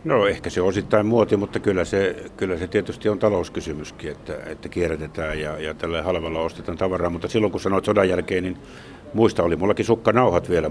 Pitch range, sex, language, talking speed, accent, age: 90-105 Hz, male, Finnish, 190 wpm, native, 60-79